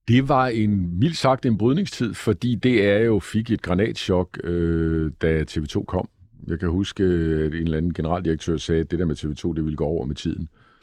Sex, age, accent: male, 50-69, native